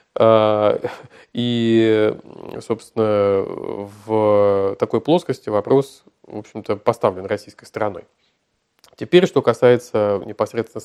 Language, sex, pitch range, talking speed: Russian, male, 105-130 Hz, 85 wpm